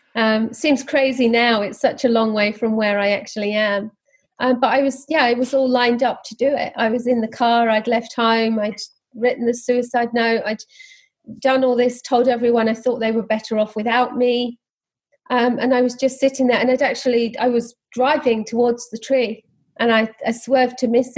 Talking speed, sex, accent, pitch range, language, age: 215 wpm, female, British, 225-260 Hz, English, 40-59